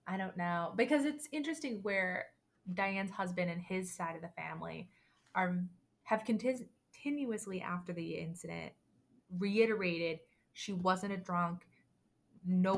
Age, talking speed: 20-39, 125 wpm